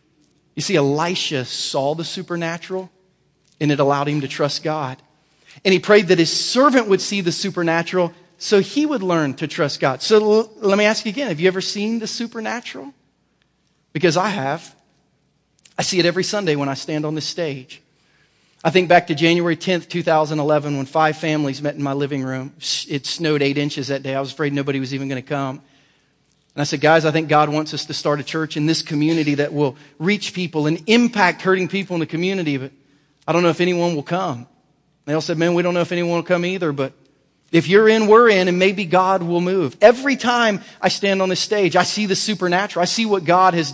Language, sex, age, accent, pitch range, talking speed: English, male, 40-59, American, 155-195 Hz, 220 wpm